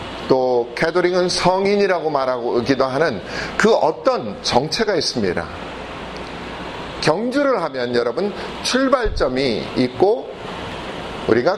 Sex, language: male, Korean